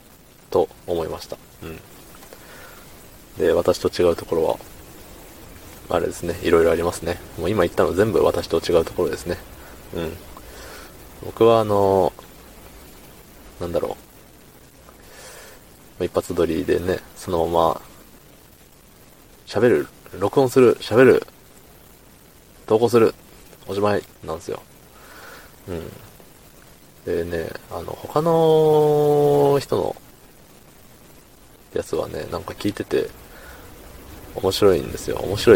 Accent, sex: native, male